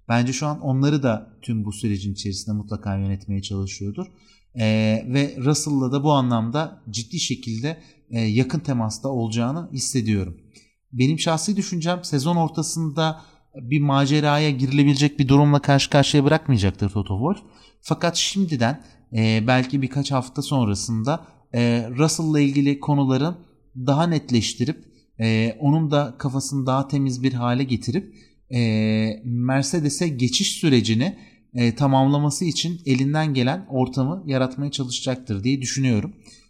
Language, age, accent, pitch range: Turkish, 30-49, native, 115-145 Hz